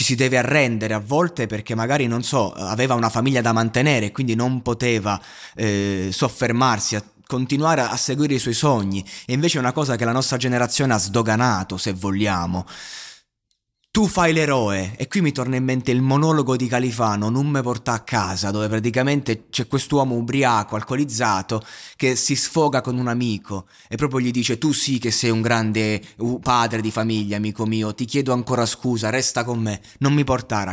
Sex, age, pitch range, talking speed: male, 20-39, 110-140 Hz, 185 wpm